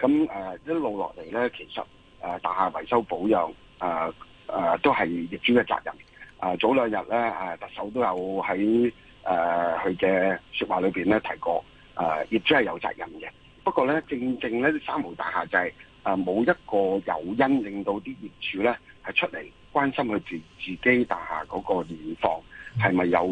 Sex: male